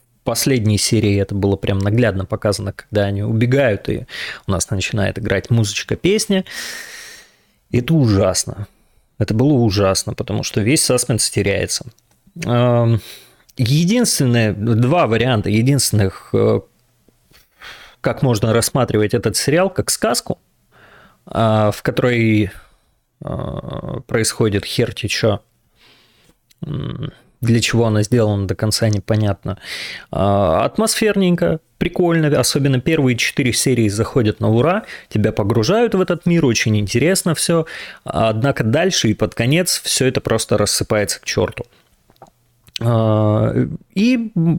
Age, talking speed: 20-39, 110 wpm